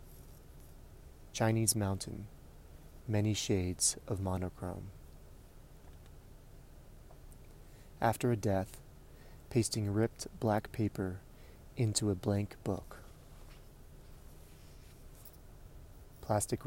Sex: male